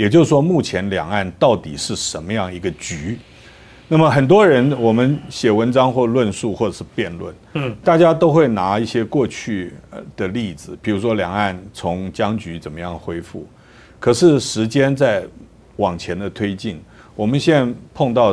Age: 50-69